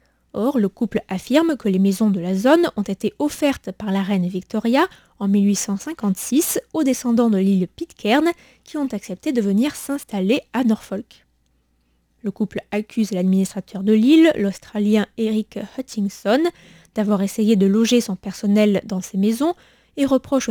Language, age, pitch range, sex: French, 20-39, 190-255 Hz, female